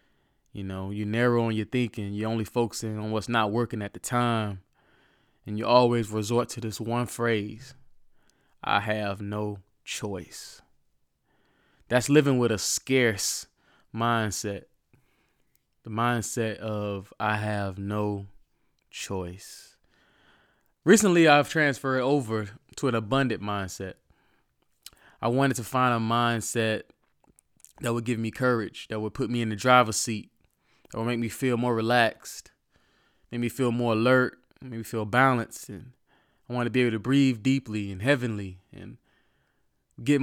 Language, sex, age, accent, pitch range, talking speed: English, male, 20-39, American, 105-125 Hz, 145 wpm